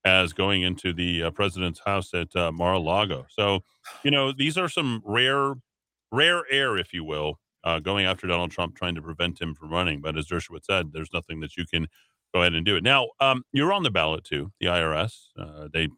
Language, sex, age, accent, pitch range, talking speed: English, male, 40-59, American, 90-120 Hz, 220 wpm